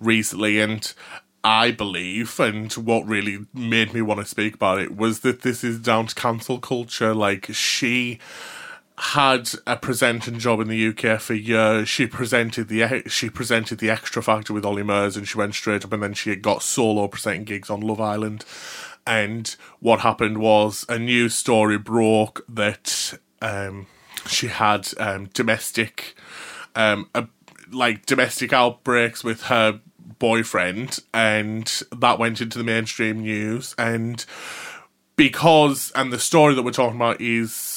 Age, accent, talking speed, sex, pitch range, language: 20-39, British, 155 wpm, male, 105-120 Hz, English